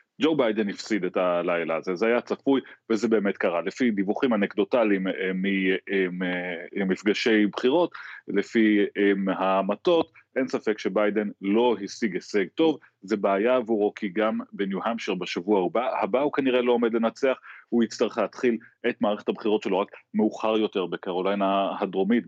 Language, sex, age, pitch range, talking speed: Hebrew, male, 30-49, 100-130 Hz, 140 wpm